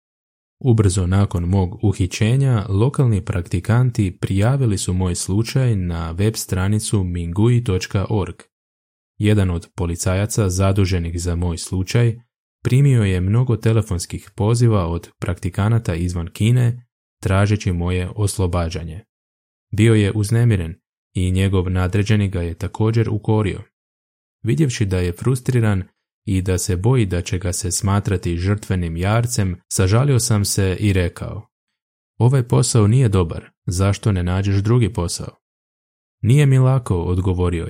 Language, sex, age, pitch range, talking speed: Croatian, male, 20-39, 90-115 Hz, 120 wpm